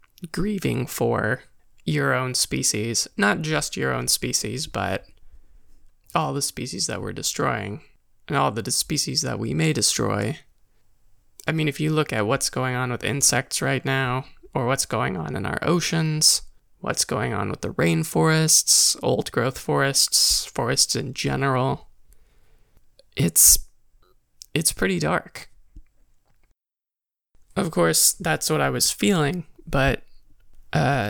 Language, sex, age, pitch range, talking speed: English, male, 20-39, 125-165 Hz, 135 wpm